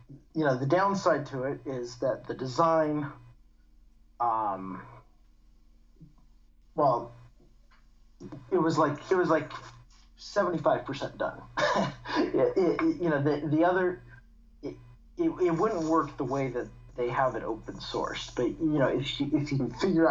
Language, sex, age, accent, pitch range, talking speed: English, male, 40-59, American, 115-155 Hz, 145 wpm